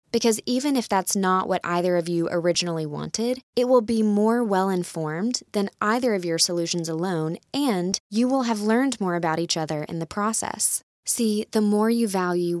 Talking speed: 185 wpm